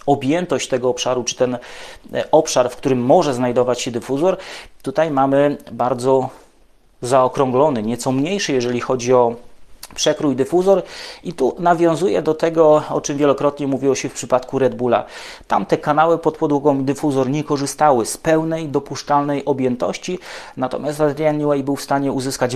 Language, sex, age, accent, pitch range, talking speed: English, male, 30-49, Polish, 125-145 Hz, 145 wpm